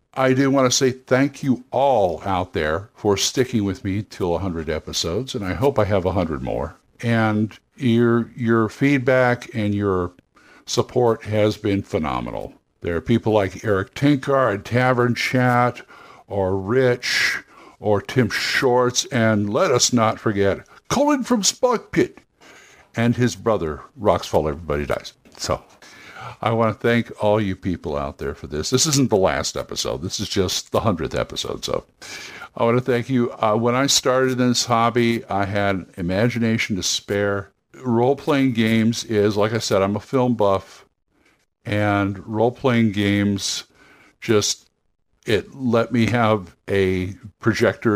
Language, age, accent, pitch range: English, 60-79, American, 100-125 Hz